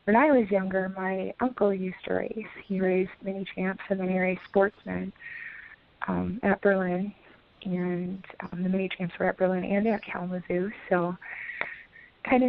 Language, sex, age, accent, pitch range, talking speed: English, female, 20-39, American, 185-205 Hz, 165 wpm